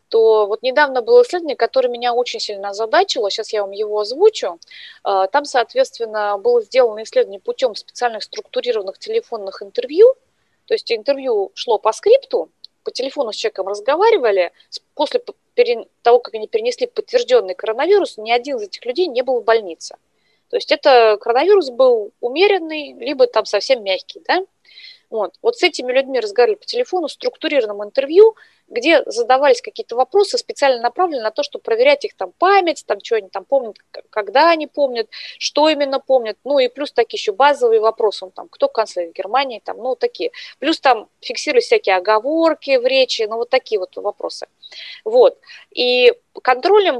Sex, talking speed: female, 165 wpm